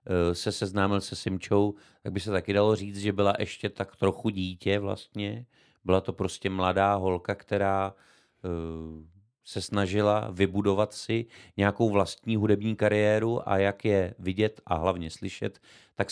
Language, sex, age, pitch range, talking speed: Czech, male, 30-49, 95-110 Hz, 145 wpm